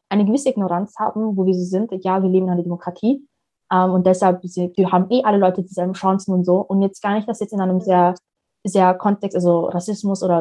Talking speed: 235 wpm